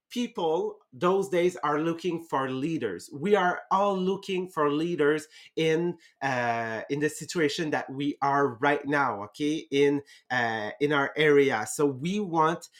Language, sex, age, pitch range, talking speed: English, male, 30-49, 145-190 Hz, 150 wpm